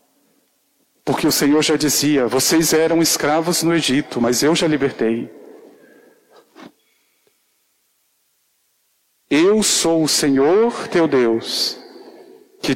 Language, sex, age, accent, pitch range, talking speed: Portuguese, male, 50-69, Brazilian, 130-170 Hz, 100 wpm